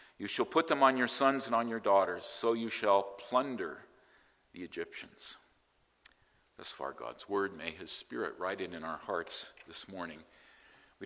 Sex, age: male, 50-69